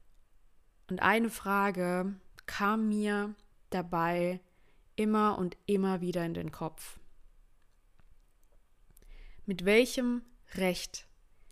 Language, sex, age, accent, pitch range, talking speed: German, female, 20-39, German, 165-215 Hz, 85 wpm